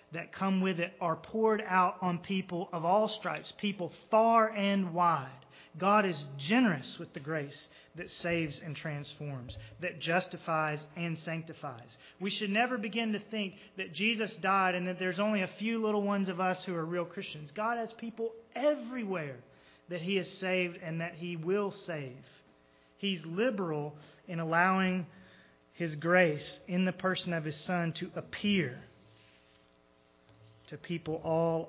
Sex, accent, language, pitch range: male, American, English, 140-185 Hz